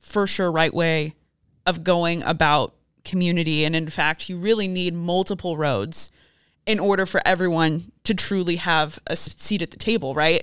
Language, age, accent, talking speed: English, 20-39, American, 165 wpm